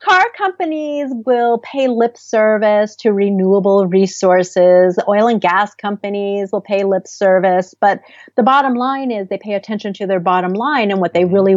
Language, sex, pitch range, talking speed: English, female, 185-245 Hz, 170 wpm